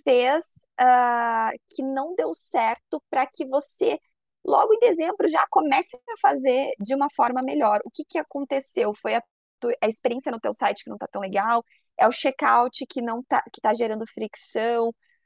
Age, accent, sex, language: 20-39, Brazilian, female, Portuguese